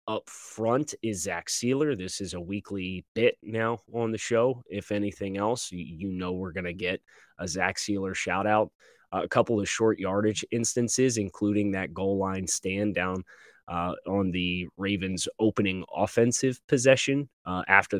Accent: American